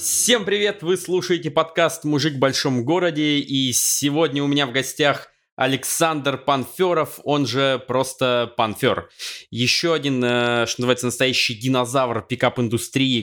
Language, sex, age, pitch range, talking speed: Russian, male, 20-39, 120-140 Hz, 125 wpm